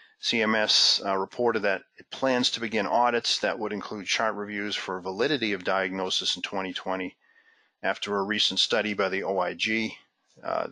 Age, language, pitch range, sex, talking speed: 40-59, English, 95-110 Hz, male, 155 wpm